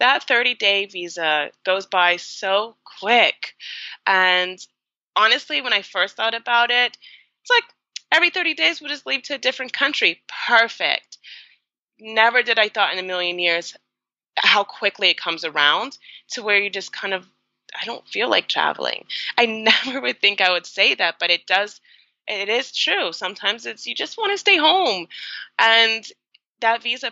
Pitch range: 170-225 Hz